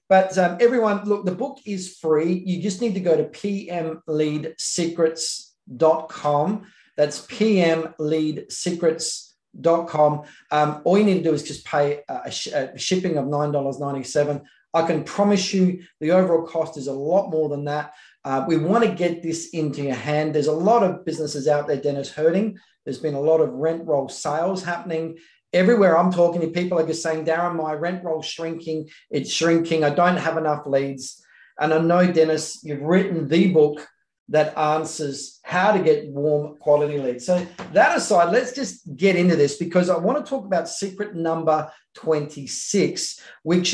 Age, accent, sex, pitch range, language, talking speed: 40-59, Australian, male, 150-180 Hz, English, 175 wpm